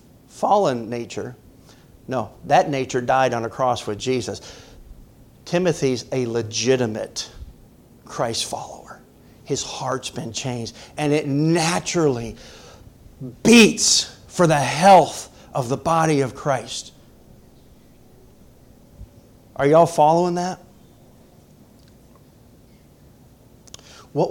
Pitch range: 125-175 Hz